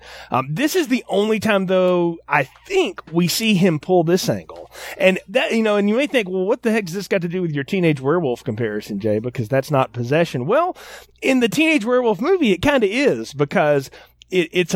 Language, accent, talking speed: English, American, 225 wpm